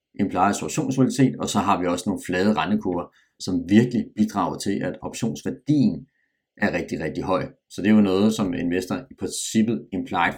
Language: Danish